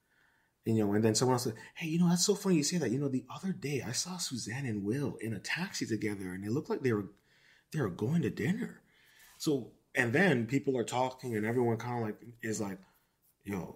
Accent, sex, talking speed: American, male, 245 wpm